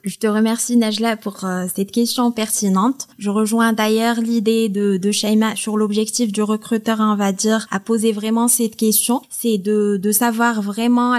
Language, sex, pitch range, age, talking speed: French, female, 210-245 Hz, 20-39, 175 wpm